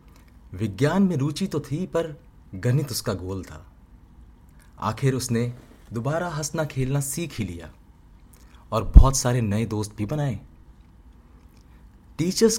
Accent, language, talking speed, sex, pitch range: native, Hindi, 125 wpm, male, 85-130 Hz